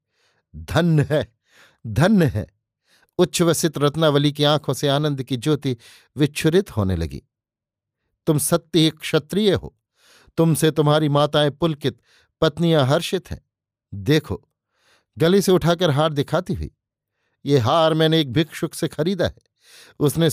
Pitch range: 135-155 Hz